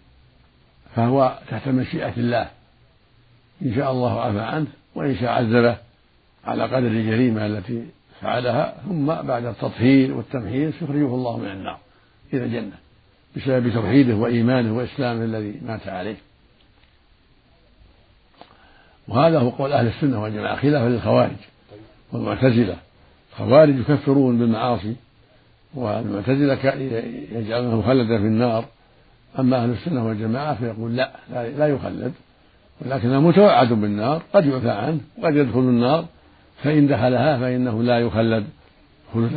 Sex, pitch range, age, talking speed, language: male, 115-135 Hz, 60-79, 115 wpm, Arabic